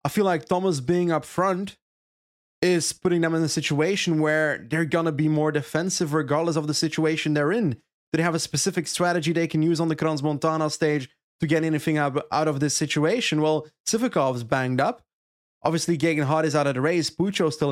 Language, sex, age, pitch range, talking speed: English, male, 20-39, 145-170 Hz, 200 wpm